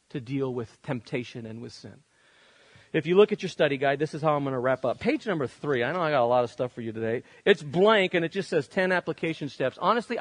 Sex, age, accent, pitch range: male, 40-59, American, 155-215 Hz